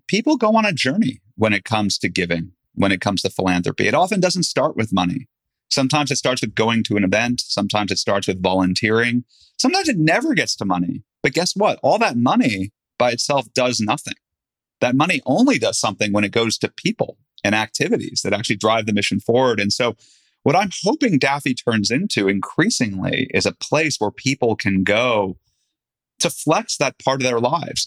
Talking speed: 195 wpm